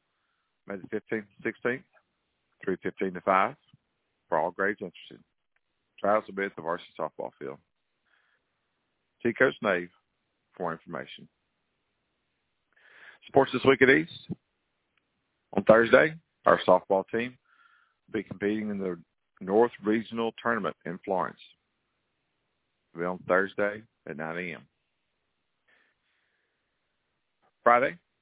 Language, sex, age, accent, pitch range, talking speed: English, male, 50-69, American, 90-120 Hz, 115 wpm